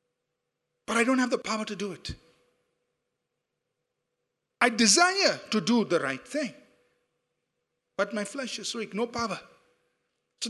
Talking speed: 135 wpm